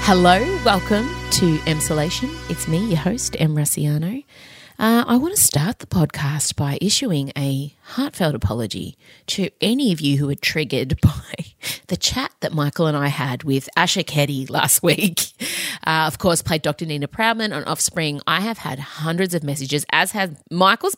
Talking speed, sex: 170 wpm, female